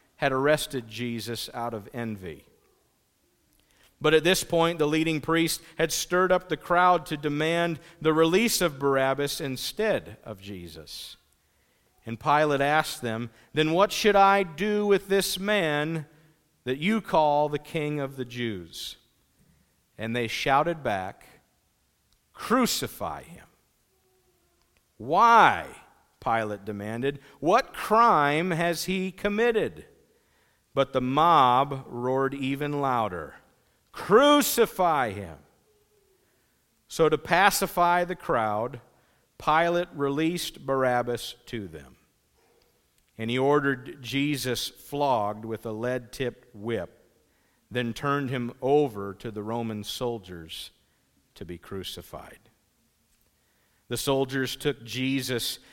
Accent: American